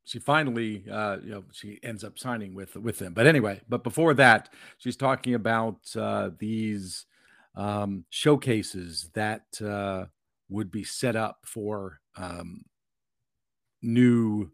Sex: male